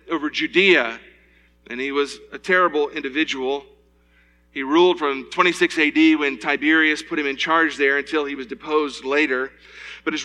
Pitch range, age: 140-175 Hz, 40-59